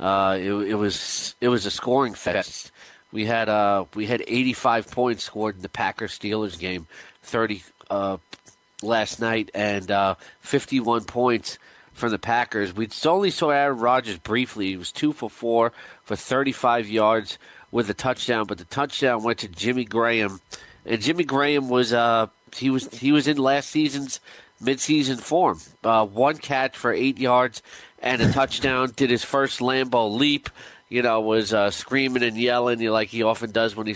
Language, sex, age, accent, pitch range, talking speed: English, male, 40-59, American, 110-130 Hz, 175 wpm